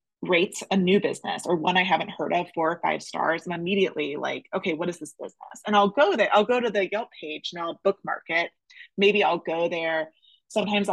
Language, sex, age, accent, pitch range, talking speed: English, female, 20-39, American, 175-230 Hz, 225 wpm